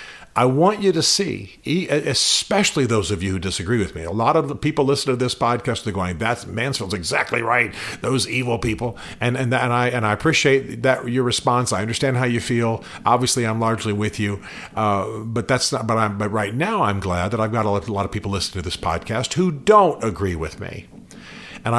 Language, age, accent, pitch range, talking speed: English, 50-69, American, 100-130 Hz, 220 wpm